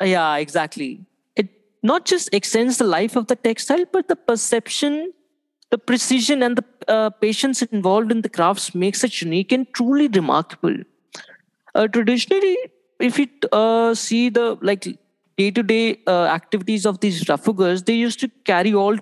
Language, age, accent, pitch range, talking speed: English, 20-39, Indian, 185-240 Hz, 155 wpm